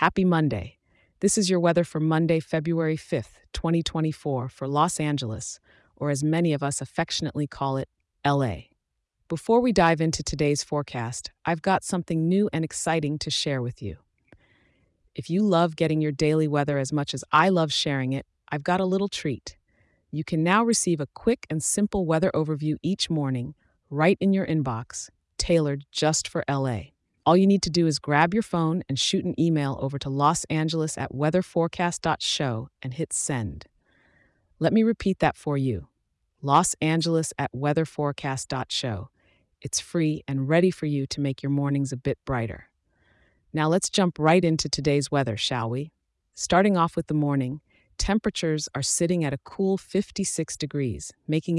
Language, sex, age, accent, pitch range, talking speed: English, female, 40-59, American, 140-170 Hz, 170 wpm